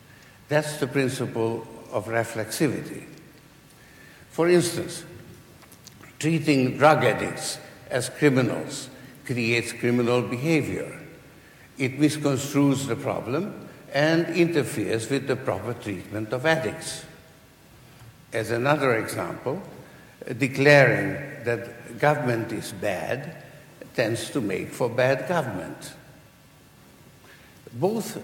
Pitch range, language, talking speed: 120-150 Hz, English, 90 wpm